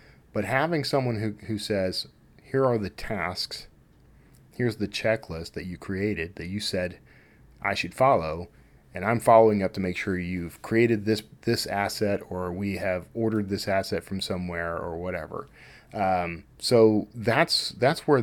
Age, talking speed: 40-59, 160 wpm